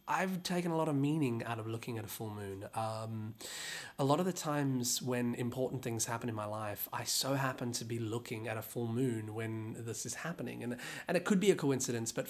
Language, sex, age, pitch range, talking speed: English, male, 20-39, 115-135 Hz, 235 wpm